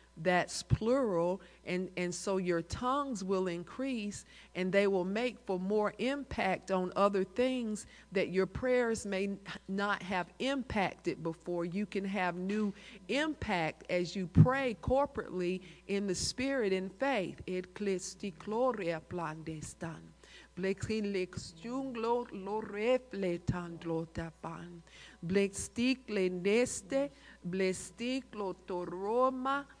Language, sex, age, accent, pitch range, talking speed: English, female, 50-69, American, 185-250 Hz, 95 wpm